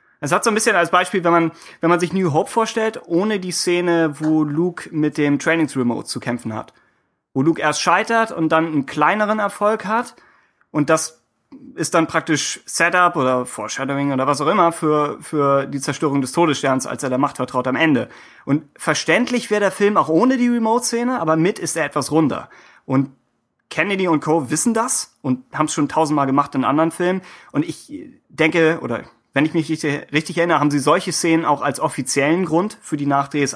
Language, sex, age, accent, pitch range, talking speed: German, male, 30-49, German, 140-170 Hz, 200 wpm